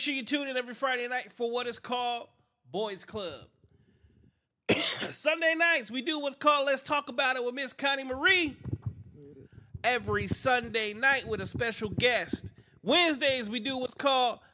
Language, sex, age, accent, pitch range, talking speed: English, male, 30-49, American, 165-265 Hz, 165 wpm